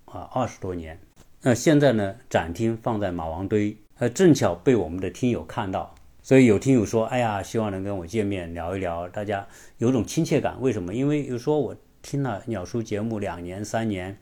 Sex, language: male, Chinese